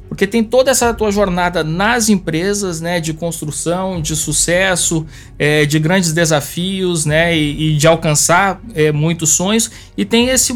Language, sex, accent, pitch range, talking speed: Portuguese, male, Brazilian, 155-190 Hz, 160 wpm